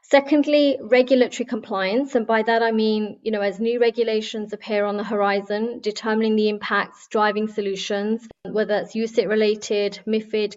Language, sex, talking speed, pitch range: English, female, 155 wpm, 200-225 Hz